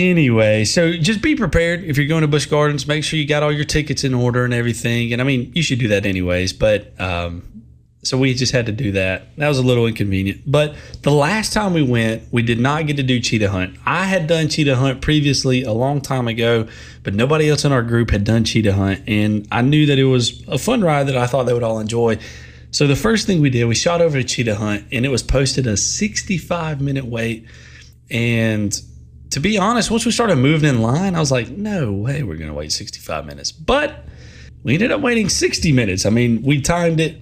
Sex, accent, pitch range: male, American, 105-150 Hz